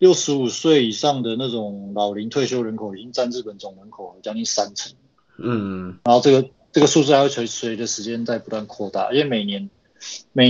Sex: male